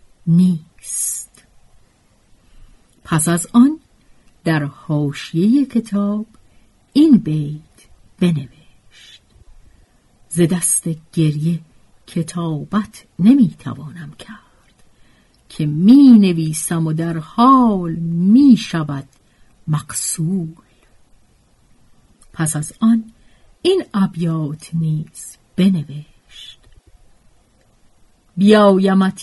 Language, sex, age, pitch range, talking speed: Persian, female, 50-69, 150-210 Hz, 65 wpm